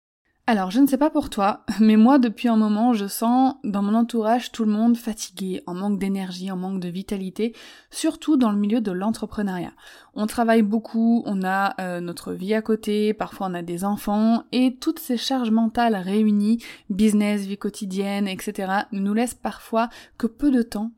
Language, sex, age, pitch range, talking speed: French, female, 20-39, 200-245 Hz, 190 wpm